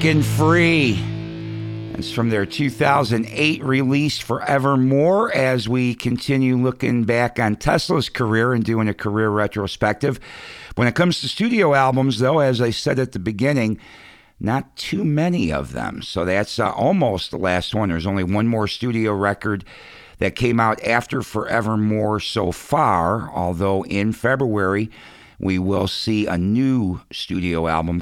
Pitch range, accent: 100-125 Hz, American